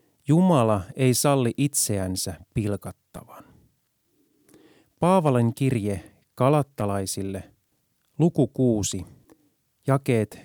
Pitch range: 100-145 Hz